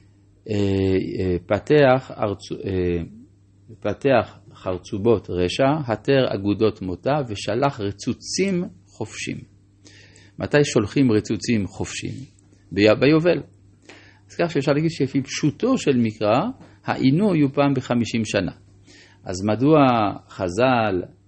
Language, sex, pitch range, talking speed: Hebrew, male, 100-135 Hz, 85 wpm